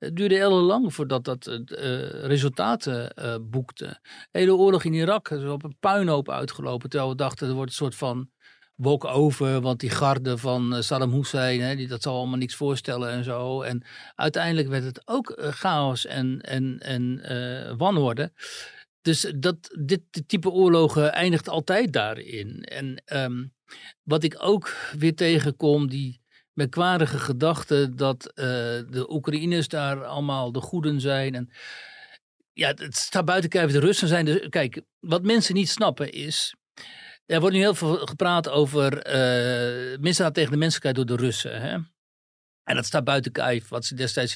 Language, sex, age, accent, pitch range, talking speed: Dutch, male, 60-79, Dutch, 125-160 Hz, 170 wpm